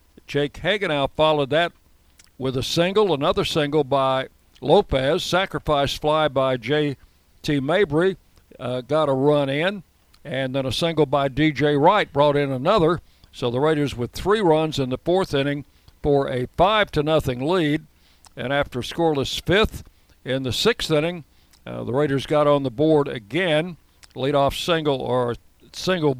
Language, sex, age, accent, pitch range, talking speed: English, male, 60-79, American, 125-155 Hz, 155 wpm